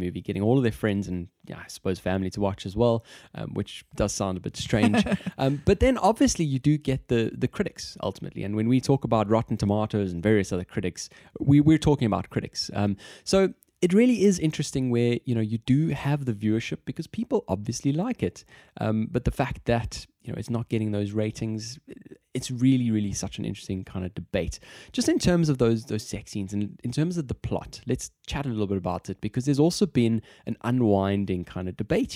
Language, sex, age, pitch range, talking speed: English, male, 20-39, 100-145 Hz, 220 wpm